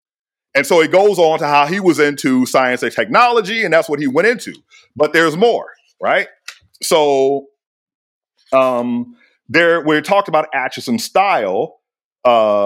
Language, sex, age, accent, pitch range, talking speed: English, male, 40-59, American, 140-225 Hz, 145 wpm